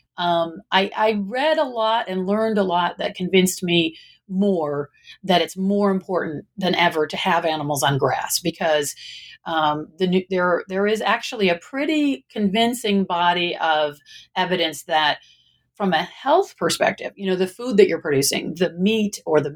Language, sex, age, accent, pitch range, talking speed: English, female, 40-59, American, 160-200 Hz, 165 wpm